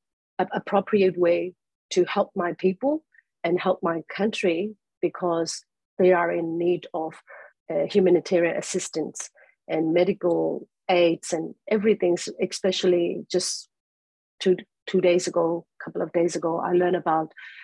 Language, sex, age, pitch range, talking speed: English, female, 40-59, 170-200 Hz, 130 wpm